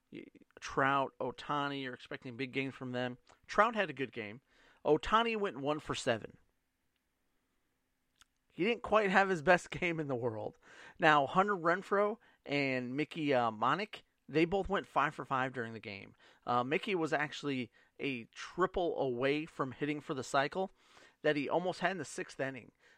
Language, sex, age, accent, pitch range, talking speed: English, male, 40-59, American, 130-170 Hz, 165 wpm